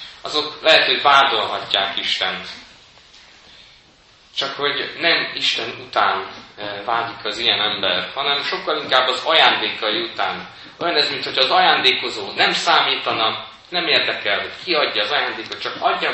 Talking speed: 130 wpm